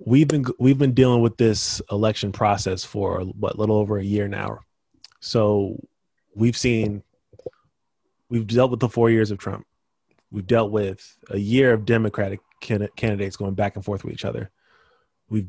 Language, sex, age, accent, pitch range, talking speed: English, male, 20-39, American, 100-115 Hz, 170 wpm